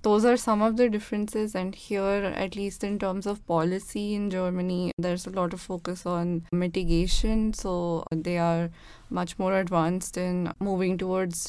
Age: 10-29